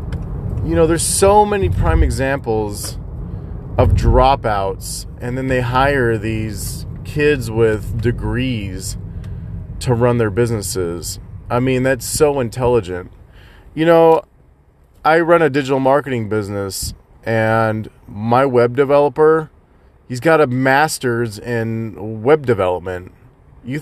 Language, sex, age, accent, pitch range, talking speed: English, male, 30-49, American, 100-155 Hz, 115 wpm